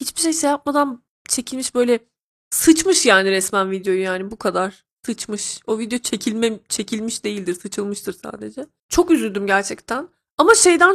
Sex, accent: female, native